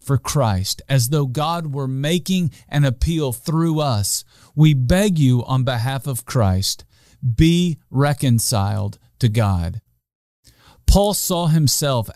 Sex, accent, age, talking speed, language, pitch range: male, American, 40-59, 125 wpm, English, 110-150 Hz